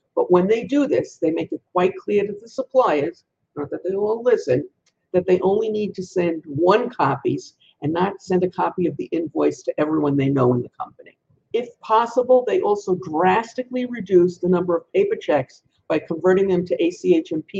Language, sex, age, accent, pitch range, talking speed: English, female, 50-69, American, 165-215 Hz, 195 wpm